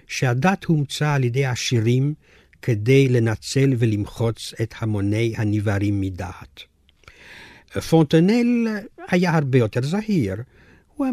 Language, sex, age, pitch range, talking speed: Hebrew, male, 60-79, 115-160 Hz, 95 wpm